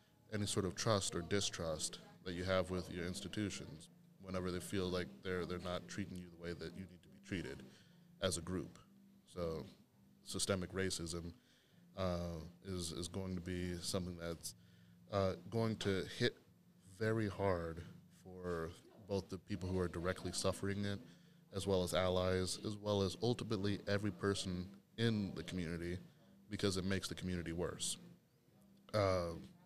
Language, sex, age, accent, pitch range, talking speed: English, male, 30-49, American, 90-105 Hz, 160 wpm